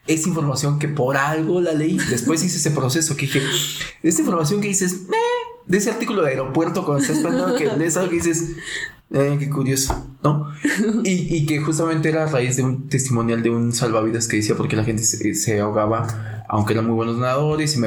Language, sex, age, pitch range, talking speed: Spanish, male, 20-39, 115-155 Hz, 210 wpm